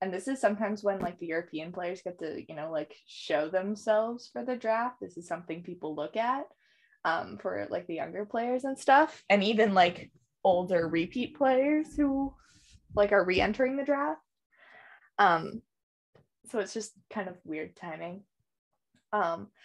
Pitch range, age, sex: 175-250 Hz, 20-39, female